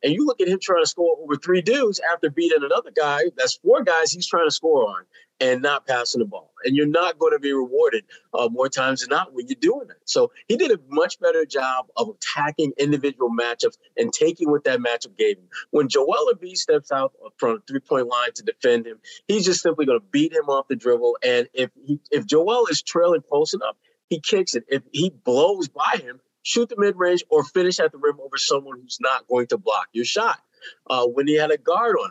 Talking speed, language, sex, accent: 235 wpm, English, male, American